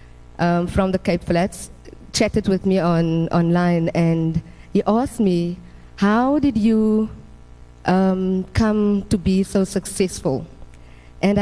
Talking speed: 125 wpm